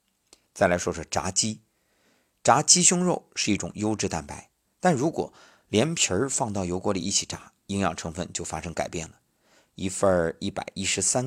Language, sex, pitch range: Chinese, male, 85-110 Hz